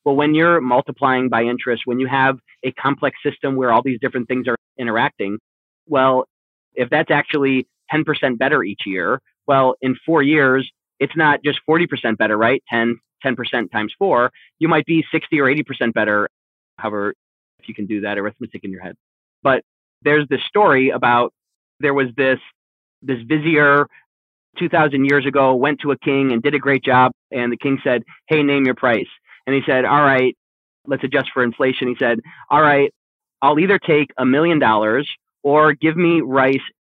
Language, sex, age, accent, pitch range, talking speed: English, male, 30-49, American, 125-145 Hz, 180 wpm